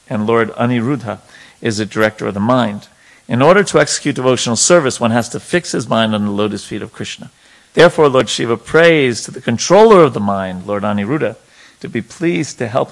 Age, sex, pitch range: 50-69, male, 105-135 Hz